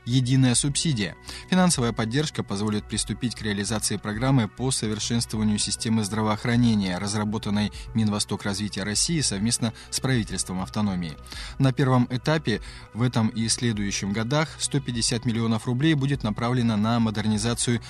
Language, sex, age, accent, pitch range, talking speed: Russian, male, 20-39, native, 105-125 Hz, 115 wpm